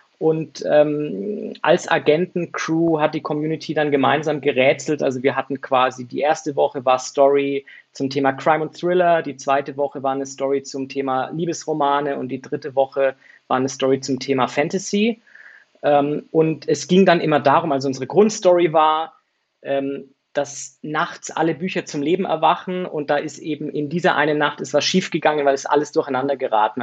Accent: German